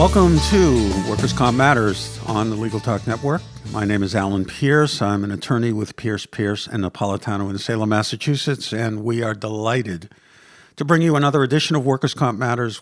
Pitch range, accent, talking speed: 110-140 Hz, American, 185 wpm